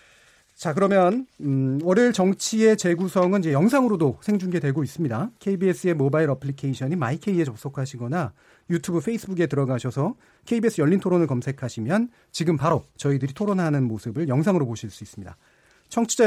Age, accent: 40-59, native